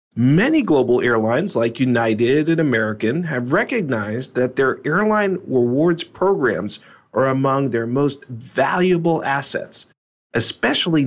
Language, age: English, 40-59